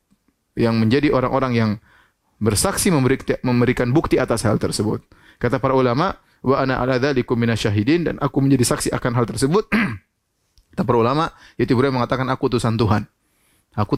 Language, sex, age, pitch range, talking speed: Indonesian, male, 30-49, 110-135 Hz, 150 wpm